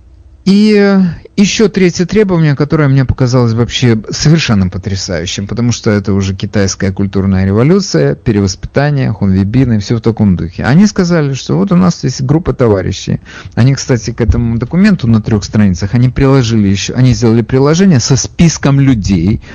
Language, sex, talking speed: English, male, 150 wpm